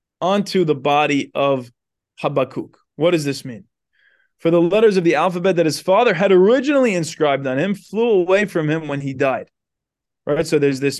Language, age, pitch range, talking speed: English, 20-39, 150-190 Hz, 185 wpm